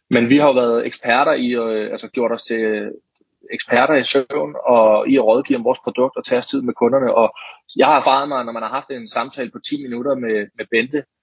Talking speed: 235 wpm